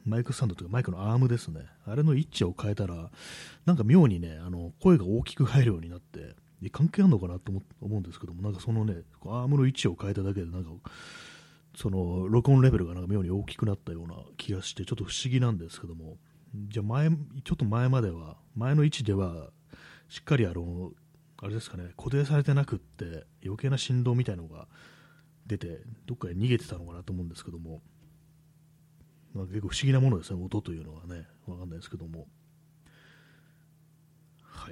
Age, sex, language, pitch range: 30-49, male, Japanese, 90-140 Hz